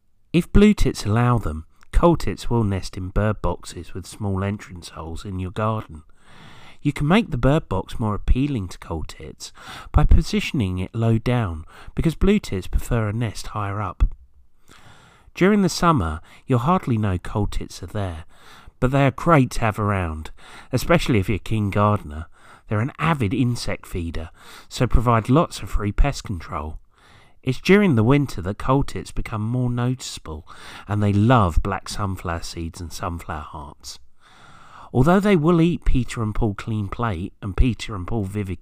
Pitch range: 90-125 Hz